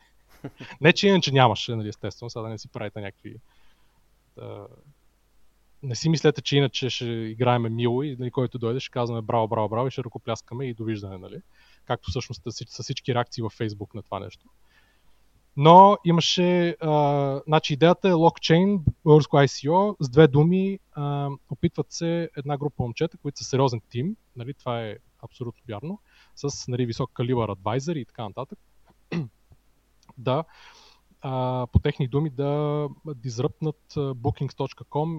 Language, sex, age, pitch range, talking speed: Bulgarian, male, 20-39, 120-150 Hz, 150 wpm